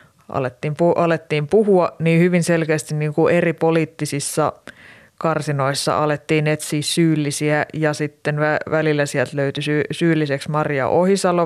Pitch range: 145-165 Hz